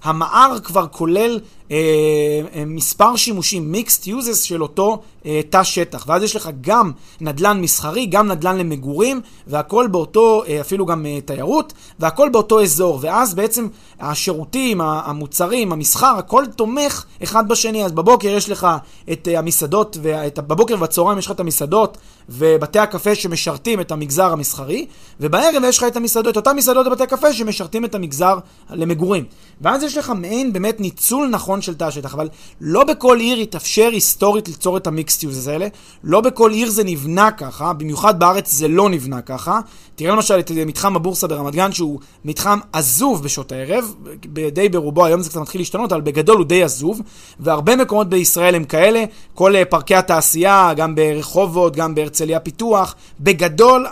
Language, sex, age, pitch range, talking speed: Hebrew, male, 30-49, 160-215 Hz, 155 wpm